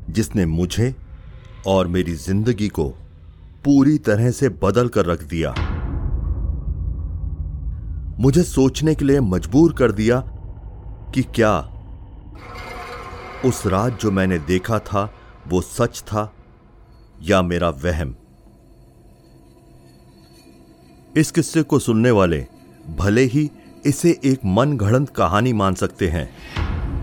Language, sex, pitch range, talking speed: Hindi, male, 85-125 Hz, 105 wpm